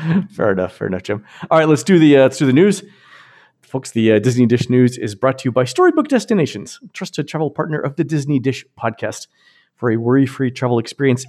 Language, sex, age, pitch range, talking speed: English, male, 40-59, 110-165 Hz, 225 wpm